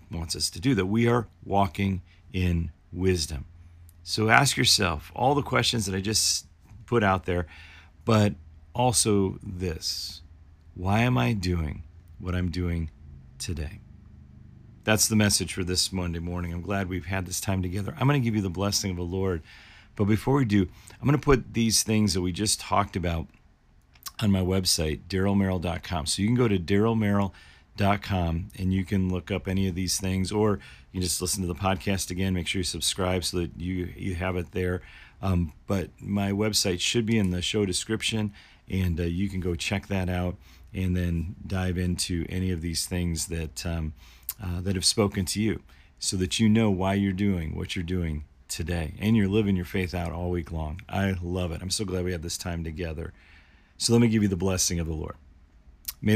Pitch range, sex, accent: 85-100 Hz, male, American